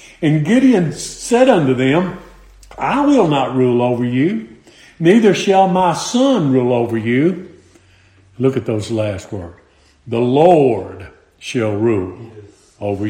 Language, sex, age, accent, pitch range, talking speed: English, male, 50-69, American, 135-200 Hz, 130 wpm